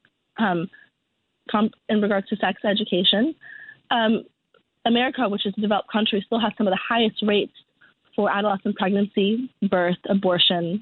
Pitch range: 185-230 Hz